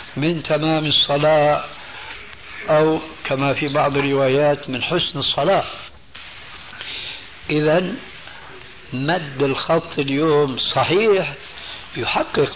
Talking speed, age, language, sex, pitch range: 80 wpm, 60-79, Arabic, male, 130-160 Hz